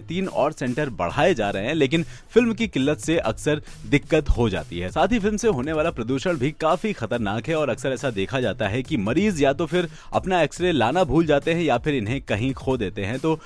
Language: Hindi